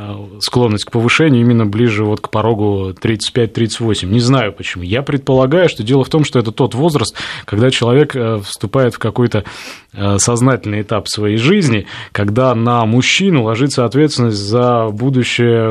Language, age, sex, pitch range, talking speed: Russian, 20-39, male, 105-130 Hz, 140 wpm